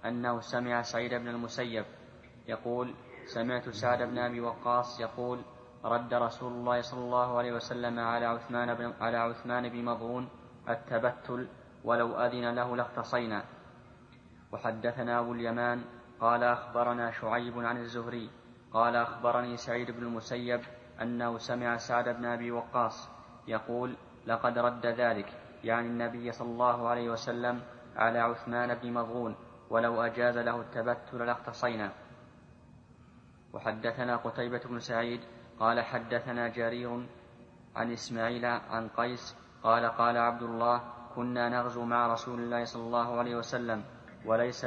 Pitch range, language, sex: 115-120 Hz, Arabic, male